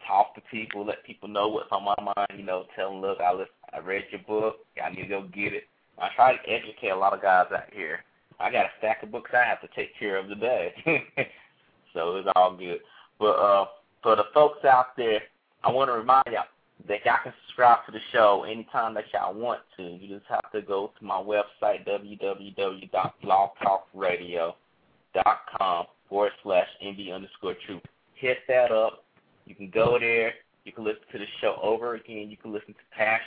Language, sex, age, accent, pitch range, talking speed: English, male, 20-39, American, 95-110 Hz, 200 wpm